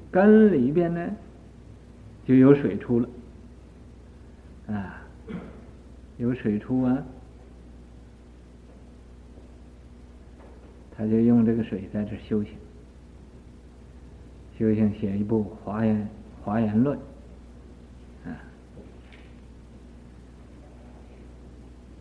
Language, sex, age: Chinese, male, 50-69